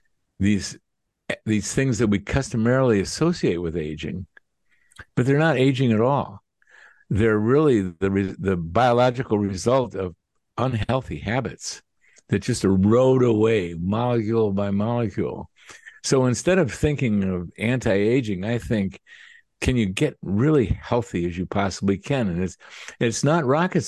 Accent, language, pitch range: American, English, 100-130 Hz